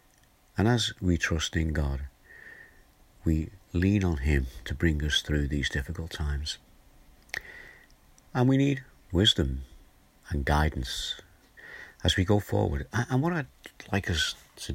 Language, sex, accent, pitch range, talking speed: English, male, British, 70-95 Hz, 135 wpm